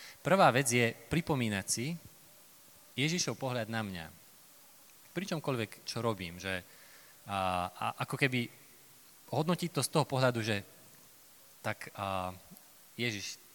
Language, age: Slovak, 20-39